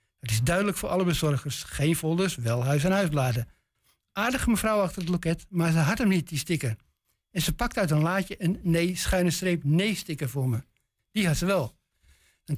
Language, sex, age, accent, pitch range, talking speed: Dutch, male, 60-79, Dutch, 145-195 Hz, 185 wpm